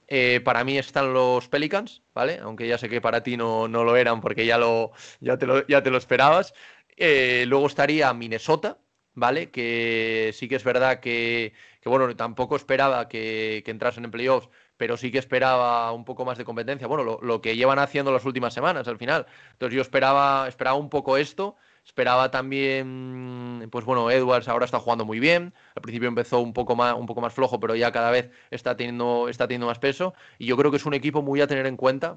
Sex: male